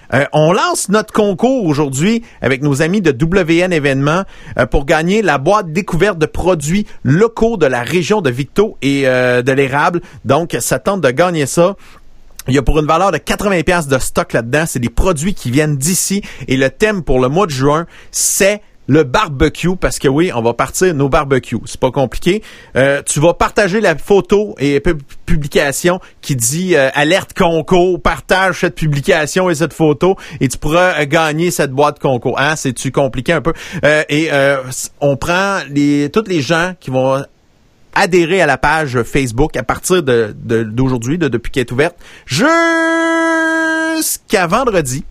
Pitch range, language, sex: 140-185 Hz, French, male